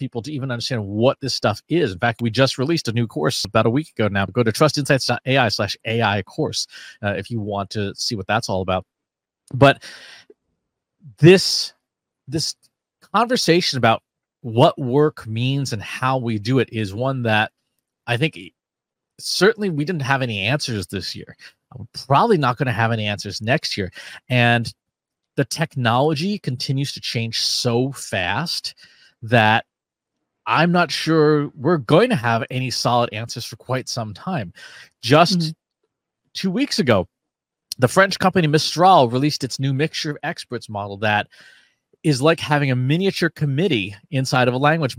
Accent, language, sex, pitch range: American, English, male, 115-155 Hz